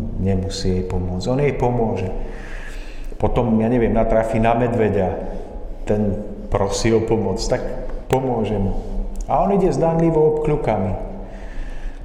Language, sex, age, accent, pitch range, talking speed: Czech, male, 50-69, native, 105-120 Hz, 120 wpm